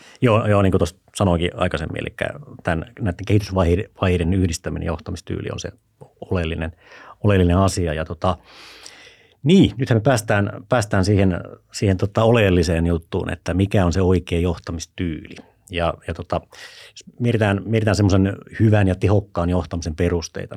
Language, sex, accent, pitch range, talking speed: Finnish, male, native, 90-110 Hz, 145 wpm